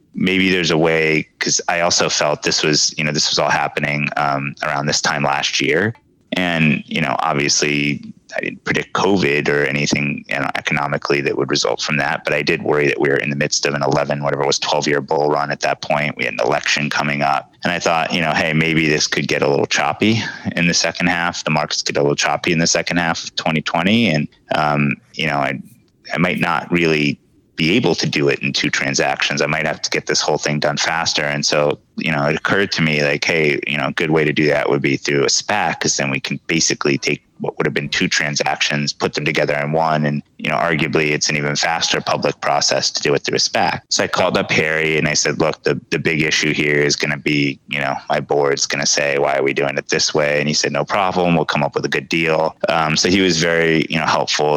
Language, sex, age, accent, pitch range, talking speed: English, male, 30-49, American, 70-80 Hz, 255 wpm